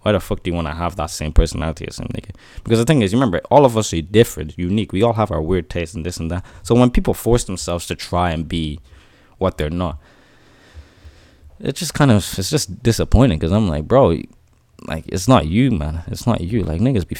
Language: English